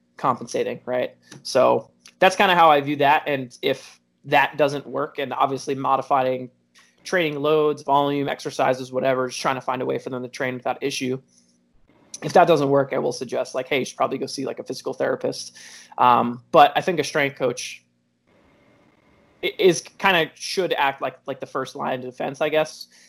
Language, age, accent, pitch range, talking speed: Hindi, 20-39, American, 125-150 Hz, 195 wpm